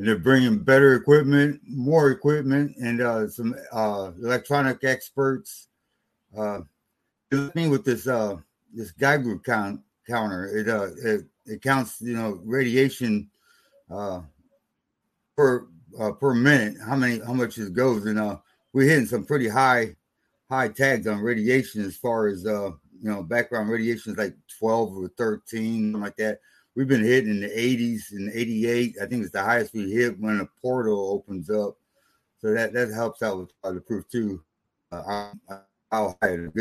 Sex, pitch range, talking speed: male, 105-130 Hz, 170 wpm